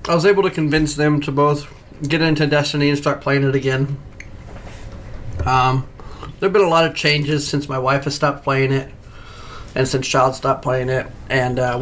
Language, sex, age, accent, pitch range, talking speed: English, male, 30-49, American, 130-165 Hz, 195 wpm